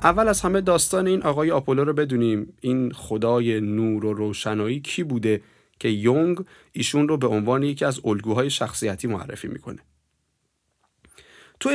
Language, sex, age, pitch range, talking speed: Persian, male, 30-49, 110-145 Hz, 150 wpm